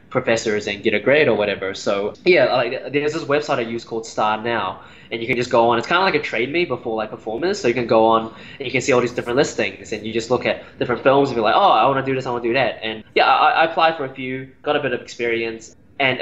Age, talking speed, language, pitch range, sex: 10-29, 300 wpm, English, 115-145 Hz, male